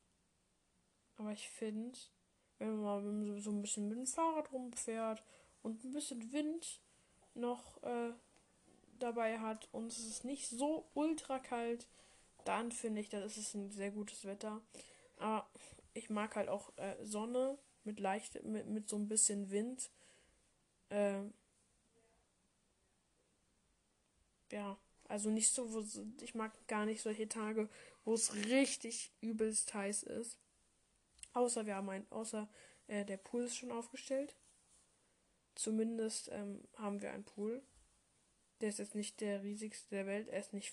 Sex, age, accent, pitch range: female, 10-29, German, 205-240 Hz